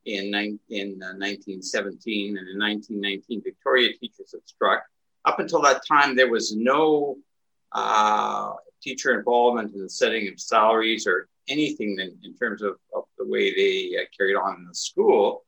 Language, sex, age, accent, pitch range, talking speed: English, male, 60-79, American, 105-165 Hz, 165 wpm